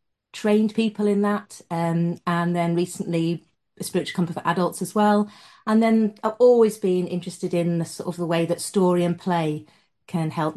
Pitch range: 170-210 Hz